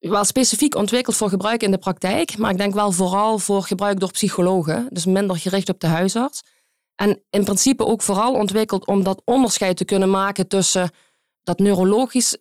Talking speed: 185 wpm